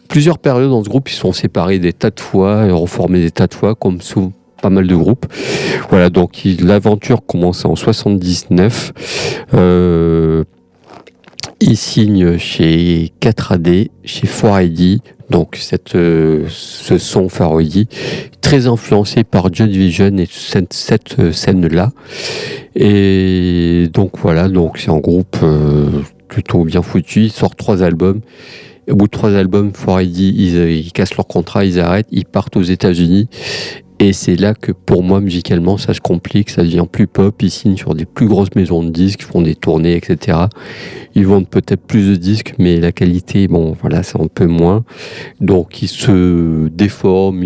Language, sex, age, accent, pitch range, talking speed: French, male, 50-69, French, 85-100 Hz, 165 wpm